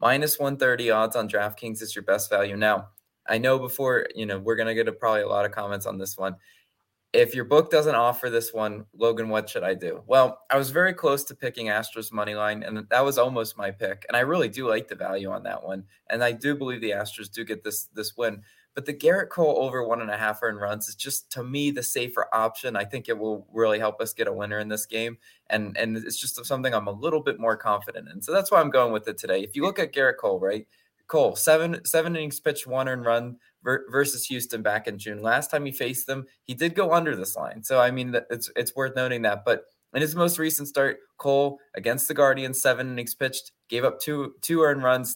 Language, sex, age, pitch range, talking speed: English, male, 20-39, 110-140 Hz, 245 wpm